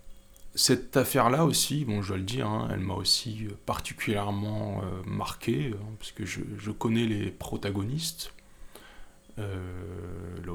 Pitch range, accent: 95-110 Hz, French